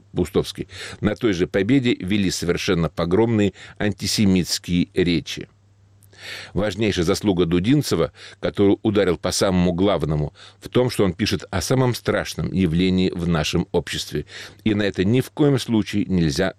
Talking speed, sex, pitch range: 140 wpm, male, 90-110 Hz